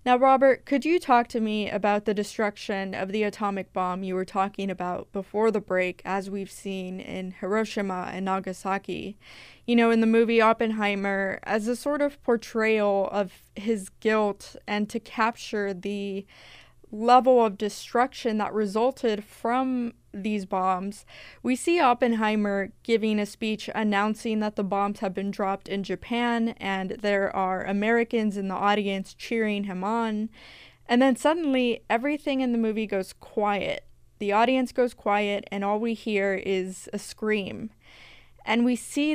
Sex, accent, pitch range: female, American, 200-240 Hz